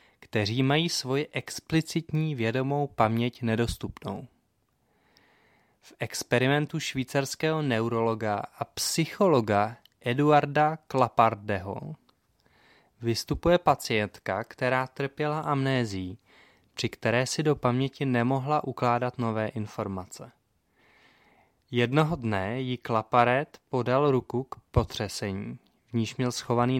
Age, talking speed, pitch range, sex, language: 20-39, 90 wpm, 110-140 Hz, male, English